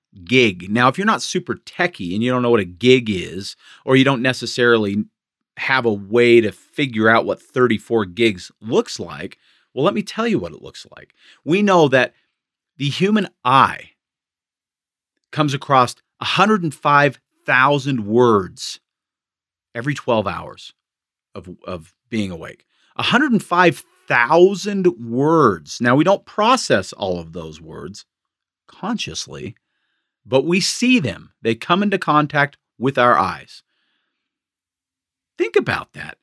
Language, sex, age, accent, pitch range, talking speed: English, male, 40-59, American, 115-170 Hz, 135 wpm